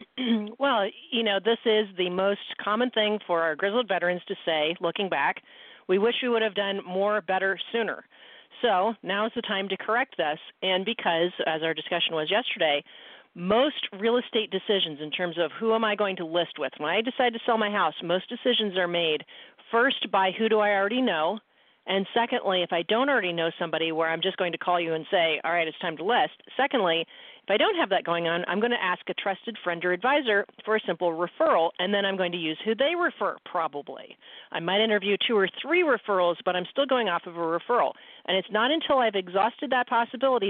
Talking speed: 220 wpm